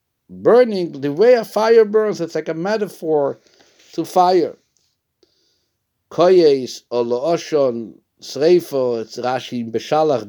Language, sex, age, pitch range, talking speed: English, male, 60-79, 110-140 Hz, 110 wpm